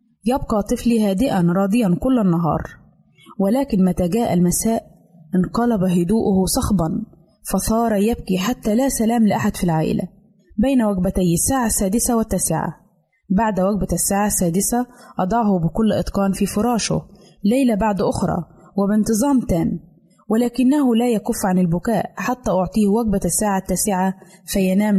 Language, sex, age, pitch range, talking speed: Arabic, female, 20-39, 185-230 Hz, 120 wpm